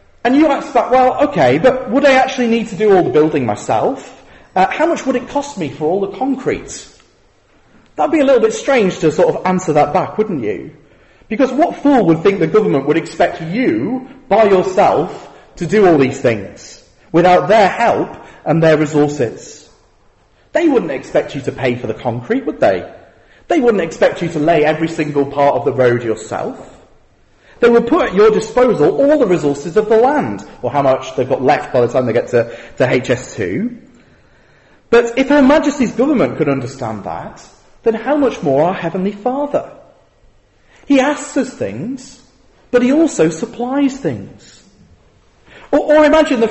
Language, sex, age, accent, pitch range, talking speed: English, male, 40-59, British, 160-260 Hz, 185 wpm